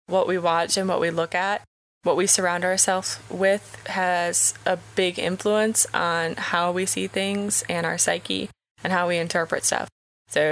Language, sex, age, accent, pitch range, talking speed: English, female, 20-39, American, 165-195 Hz, 175 wpm